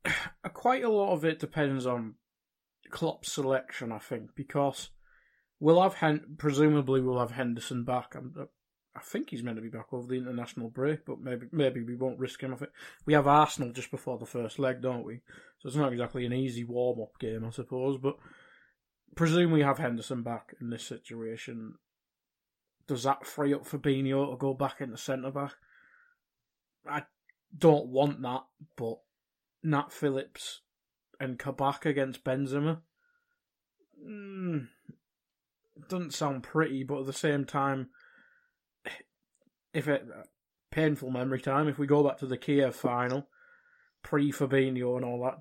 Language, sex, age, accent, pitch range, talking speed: English, male, 20-39, British, 125-150 Hz, 160 wpm